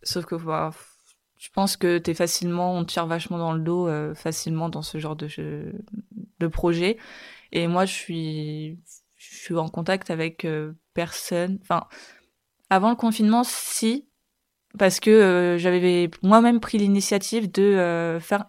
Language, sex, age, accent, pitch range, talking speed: French, female, 20-39, French, 160-200 Hz, 165 wpm